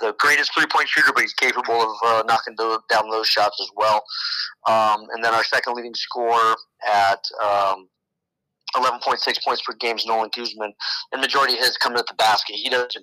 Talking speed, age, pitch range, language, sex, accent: 190 wpm, 30-49, 105-120 Hz, English, male, American